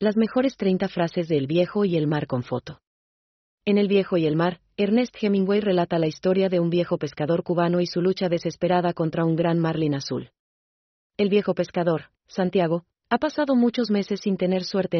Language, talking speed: German, 190 wpm